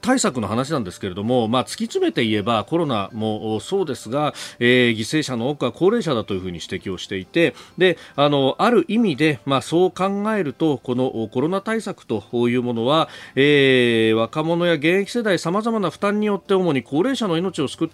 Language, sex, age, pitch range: Japanese, male, 40-59, 110-175 Hz